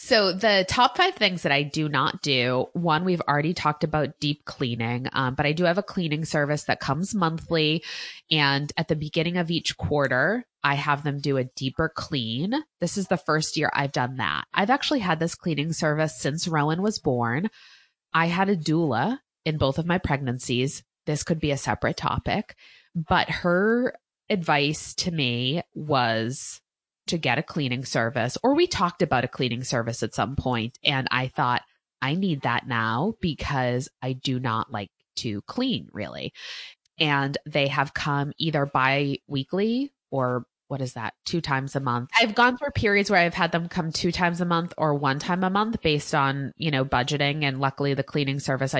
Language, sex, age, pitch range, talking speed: English, female, 20-39, 130-175 Hz, 190 wpm